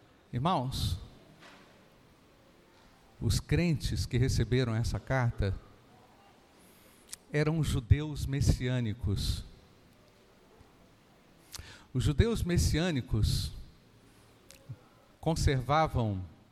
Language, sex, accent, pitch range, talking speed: Portuguese, male, Brazilian, 105-140 Hz, 50 wpm